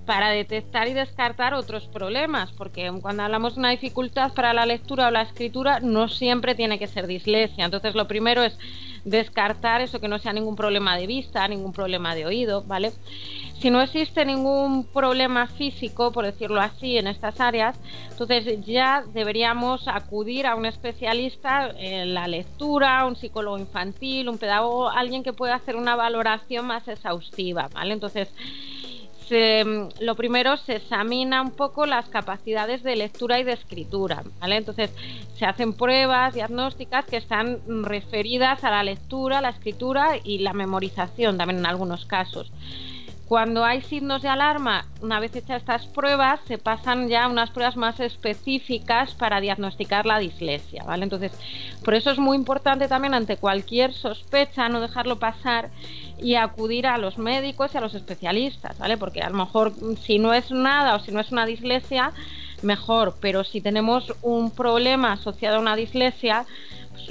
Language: Spanish